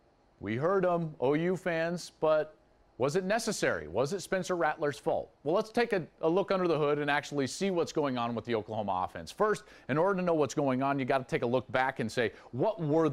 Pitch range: 115-165 Hz